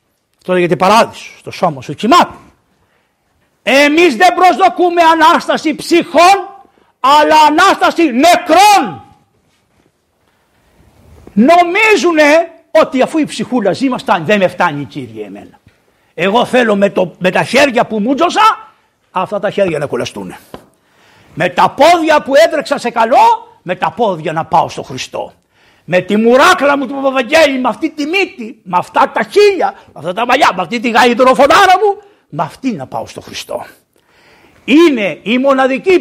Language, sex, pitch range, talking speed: Greek, male, 190-315 Hz, 150 wpm